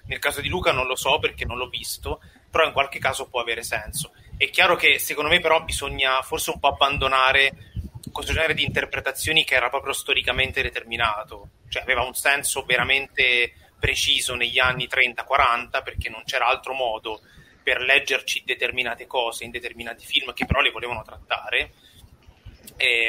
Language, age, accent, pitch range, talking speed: Italian, 30-49, native, 120-140 Hz, 170 wpm